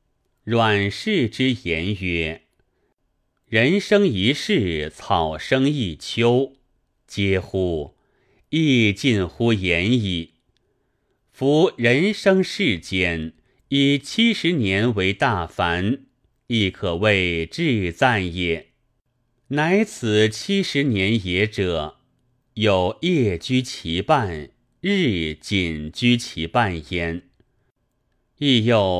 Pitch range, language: 90-130 Hz, Chinese